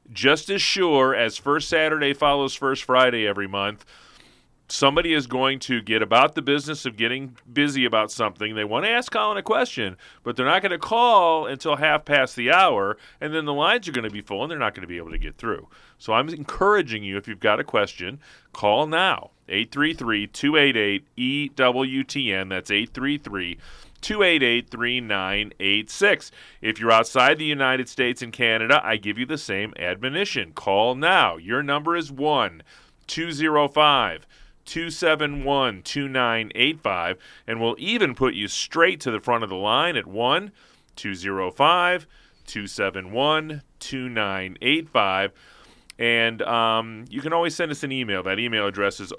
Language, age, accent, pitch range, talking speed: English, 40-59, American, 105-145 Hz, 150 wpm